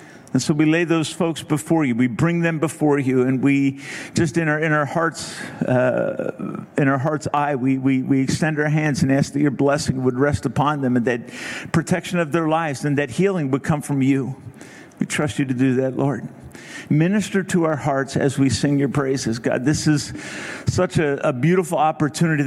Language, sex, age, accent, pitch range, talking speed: English, male, 50-69, American, 135-160 Hz, 210 wpm